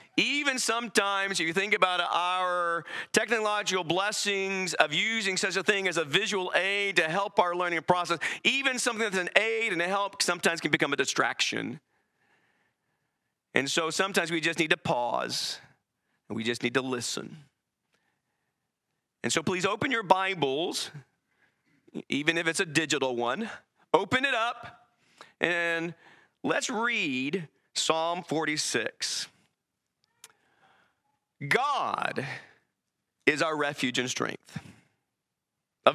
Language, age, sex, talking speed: English, 40-59, male, 130 wpm